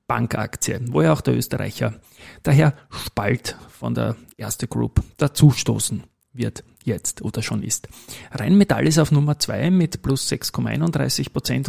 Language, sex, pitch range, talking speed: German, male, 120-150 Hz, 140 wpm